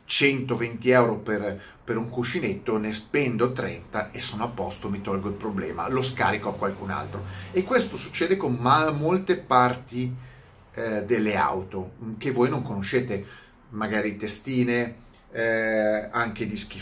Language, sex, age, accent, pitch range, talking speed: Italian, male, 30-49, native, 110-135 Hz, 145 wpm